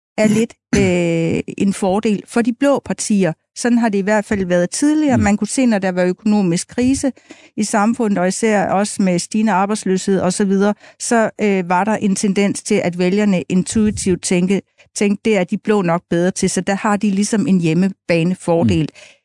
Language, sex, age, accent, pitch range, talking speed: Danish, female, 60-79, native, 180-220 Hz, 185 wpm